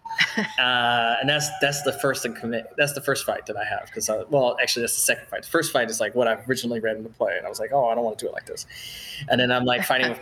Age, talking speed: 20-39, 305 wpm